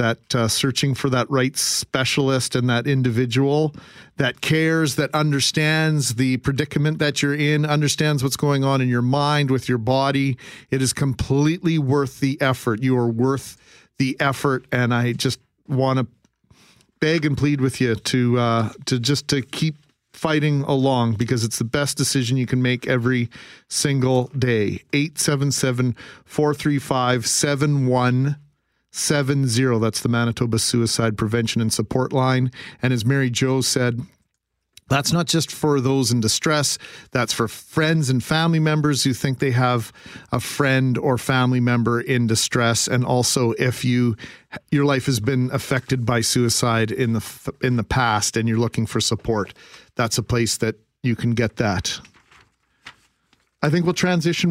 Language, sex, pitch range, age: English, male, 120-145 Hz, 40-59